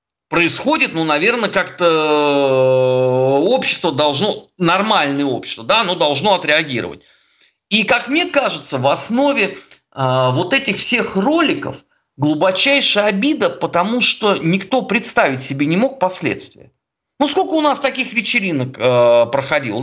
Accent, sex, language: native, male, Russian